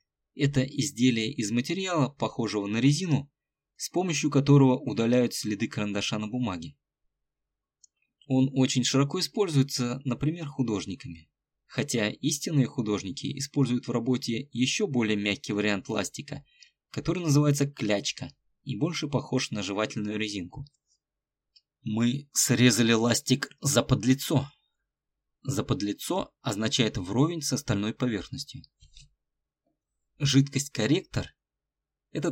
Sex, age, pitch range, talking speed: male, 20-39, 115-145 Hz, 100 wpm